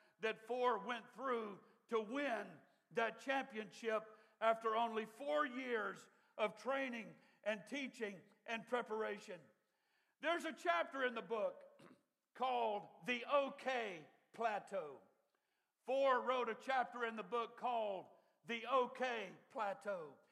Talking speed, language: 115 wpm, English